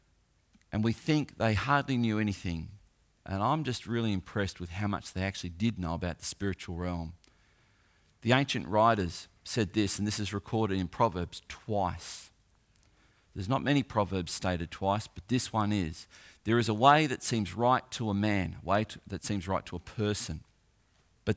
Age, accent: 40-59, Australian